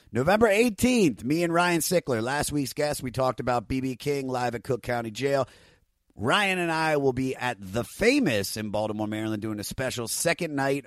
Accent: American